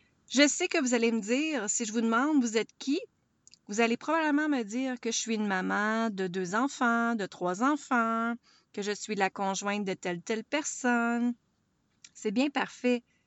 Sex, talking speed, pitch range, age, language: female, 190 wpm, 205-270 Hz, 30-49, French